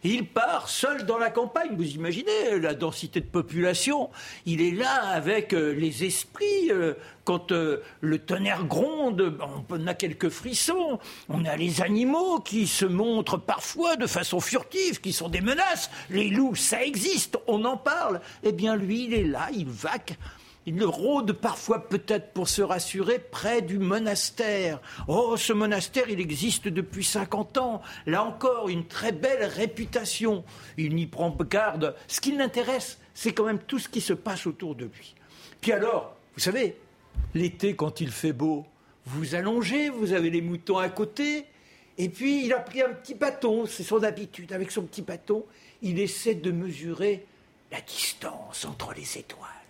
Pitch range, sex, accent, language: 175-240 Hz, male, French, French